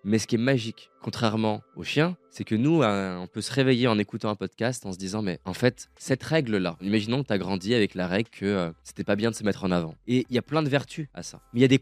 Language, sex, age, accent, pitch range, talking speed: French, male, 20-39, French, 110-160 Hz, 300 wpm